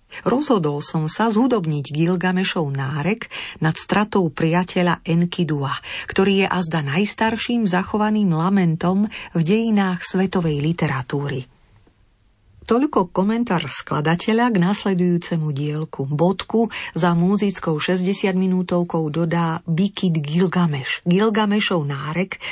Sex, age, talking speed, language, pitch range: female, 40-59, 95 wpm, Slovak, 150-195 Hz